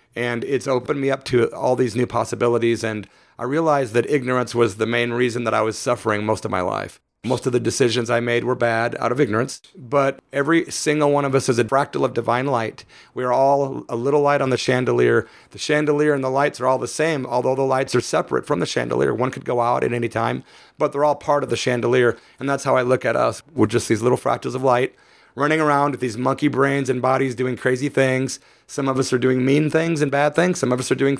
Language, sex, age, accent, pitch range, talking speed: English, male, 30-49, American, 120-140 Hz, 250 wpm